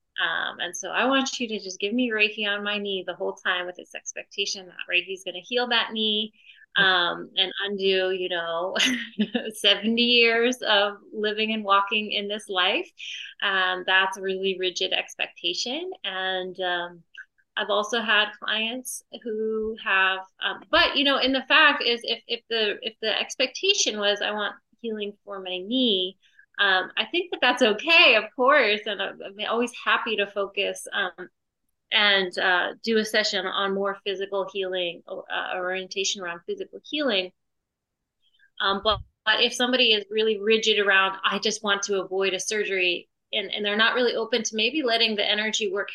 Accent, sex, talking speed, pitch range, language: American, female, 170 wpm, 190-240 Hz, English